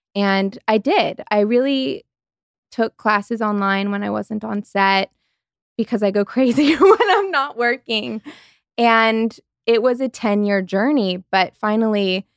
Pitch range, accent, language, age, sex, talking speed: 195-225 Hz, American, English, 20-39, female, 145 wpm